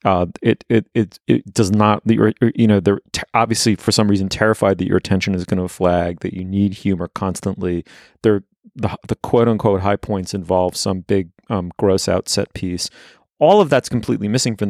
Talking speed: 190 wpm